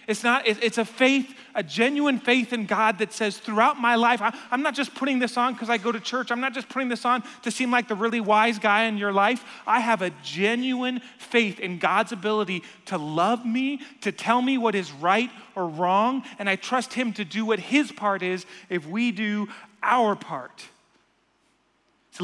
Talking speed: 210 wpm